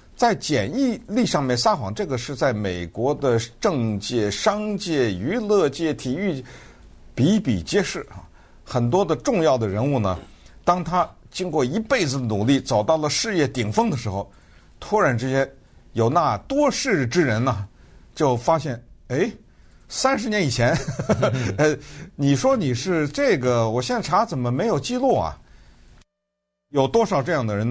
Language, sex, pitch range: Chinese, male, 100-160 Hz